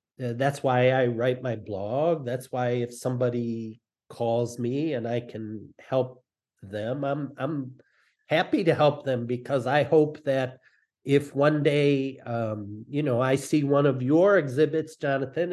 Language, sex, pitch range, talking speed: English, male, 130-165 Hz, 155 wpm